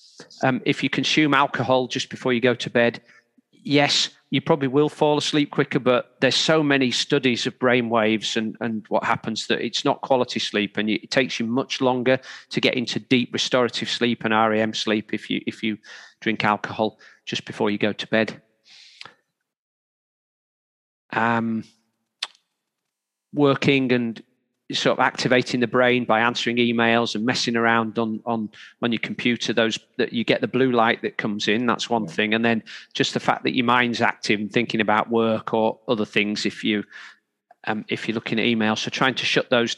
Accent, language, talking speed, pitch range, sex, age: British, English, 185 wpm, 110-135 Hz, male, 40-59